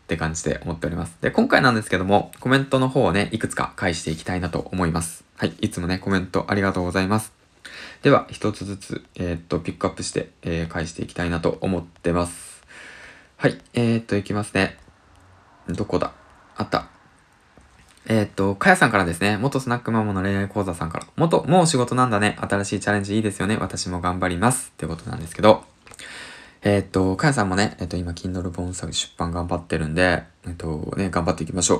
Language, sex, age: Japanese, male, 20-39